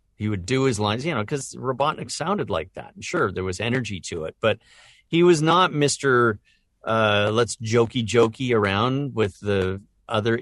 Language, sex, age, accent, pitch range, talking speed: English, male, 50-69, American, 95-120 Hz, 180 wpm